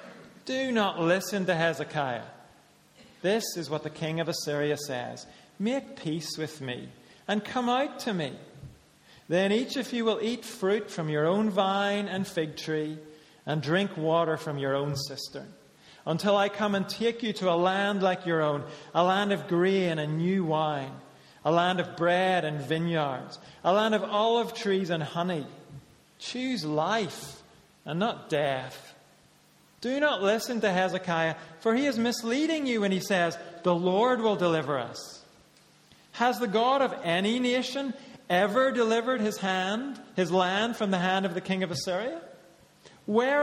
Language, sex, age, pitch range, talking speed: English, male, 40-59, 165-225 Hz, 165 wpm